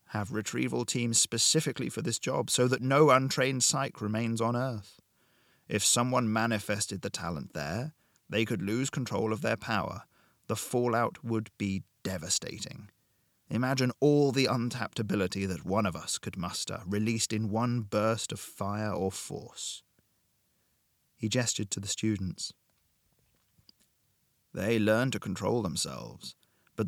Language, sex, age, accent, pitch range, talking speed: English, male, 30-49, British, 105-125 Hz, 140 wpm